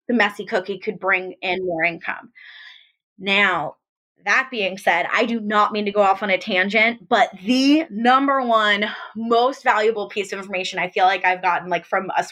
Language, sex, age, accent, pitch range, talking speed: English, female, 20-39, American, 215-330 Hz, 190 wpm